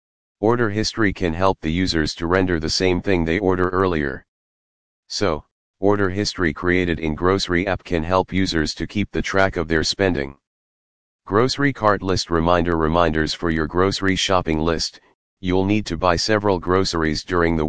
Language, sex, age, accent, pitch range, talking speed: English, male, 40-59, American, 80-95 Hz, 165 wpm